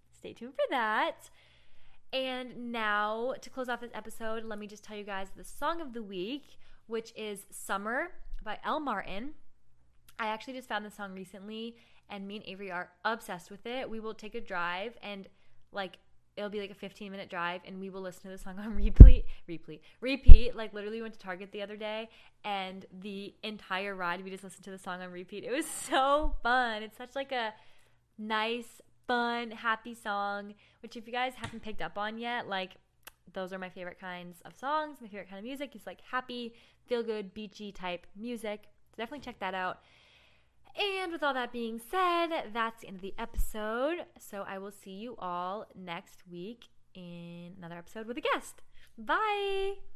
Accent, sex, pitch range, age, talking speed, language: American, female, 190-240 Hz, 20-39, 195 wpm, English